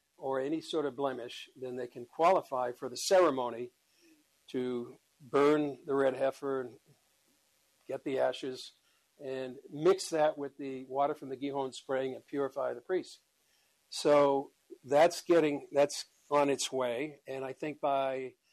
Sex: male